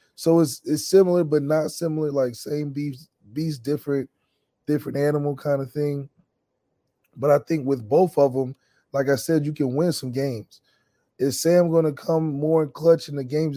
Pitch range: 135-160 Hz